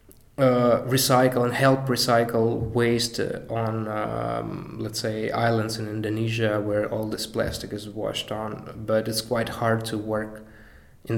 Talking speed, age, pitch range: 145 wpm, 20-39, 105-115 Hz